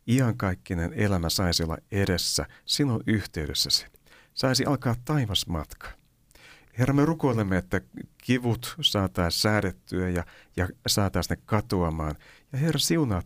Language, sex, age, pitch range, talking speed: Finnish, male, 60-79, 85-120 Hz, 115 wpm